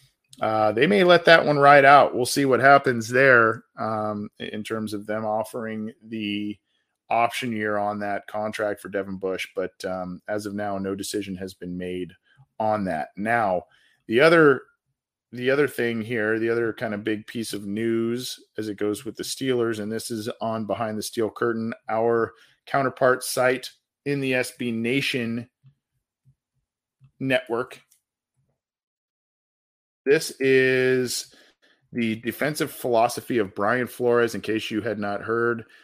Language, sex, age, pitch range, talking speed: English, male, 40-59, 105-125 Hz, 150 wpm